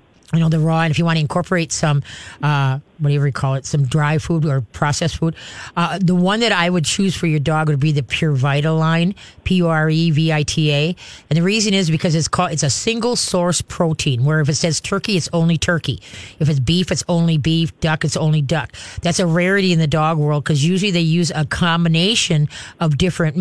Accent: American